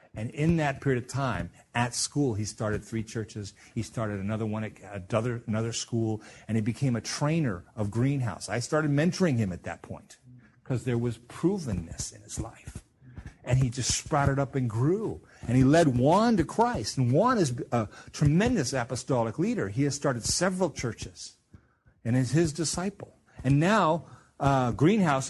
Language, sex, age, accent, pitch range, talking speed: English, male, 50-69, American, 110-145 Hz, 175 wpm